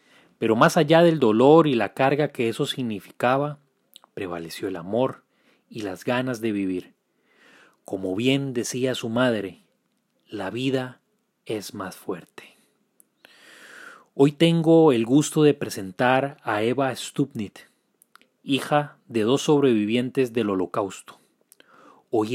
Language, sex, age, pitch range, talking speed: Spanish, male, 30-49, 105-135 Hz, 120 wpm